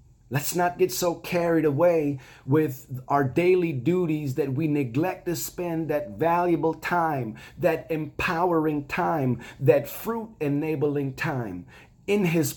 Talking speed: 125 wpm